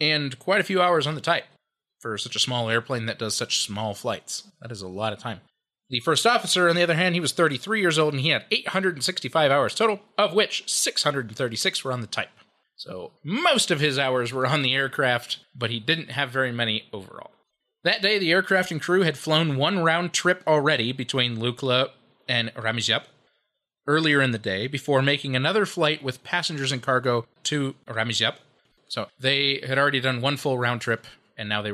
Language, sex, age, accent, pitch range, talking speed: English, male, 20-39, American, 115-155 Hz, 200 wpm